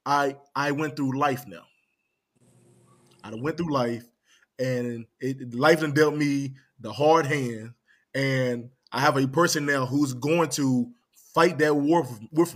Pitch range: 125-155 Hz